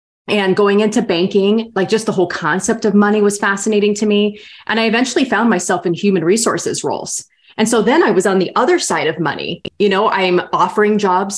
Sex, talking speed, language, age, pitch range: female, 210 wpm, English, 30-49, 180-220 Hz